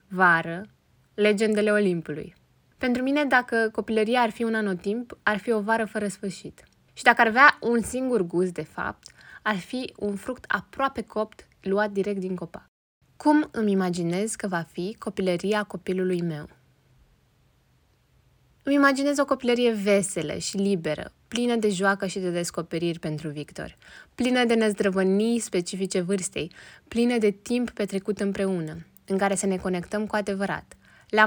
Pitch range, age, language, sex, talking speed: 185-225 Hz, 20-39, Romanian, female, 150 wpm